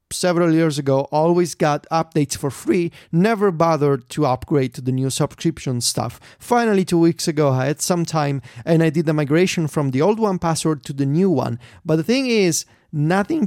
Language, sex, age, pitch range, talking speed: English, male, 30-49, 145-185 Hz, 190 wpm